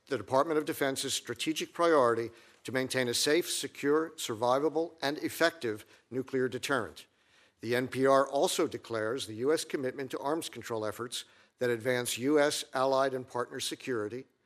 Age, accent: 50-69, American